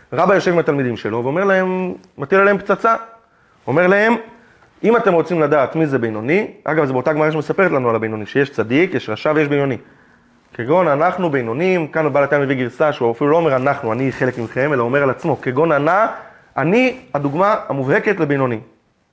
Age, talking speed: 30-49, 190 wpm